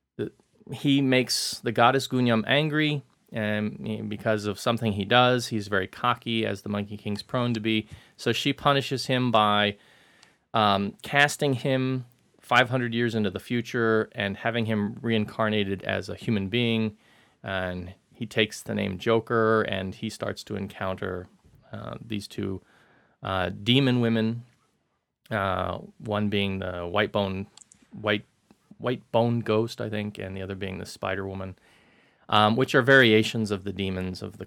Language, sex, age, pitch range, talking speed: English, male, 30-49, 100-120 Hz, 155 wpm